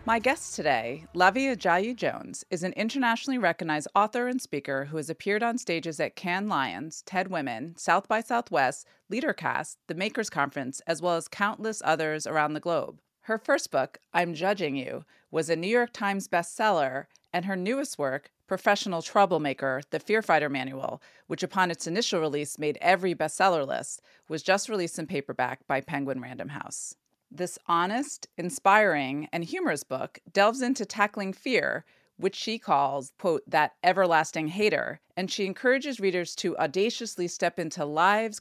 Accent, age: American, 30-49